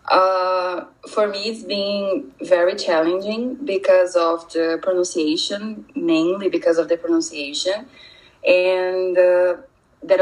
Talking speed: 110 wpm